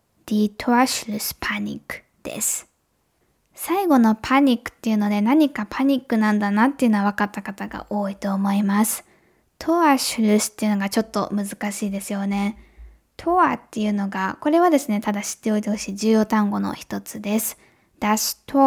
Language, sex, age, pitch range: Japanese, female, 10-29, 205-250 Hz